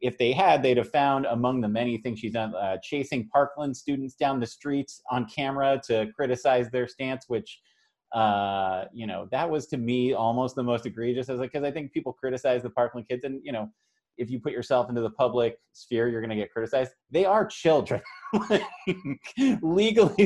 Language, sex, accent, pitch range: English, male, American, 110-140 Hz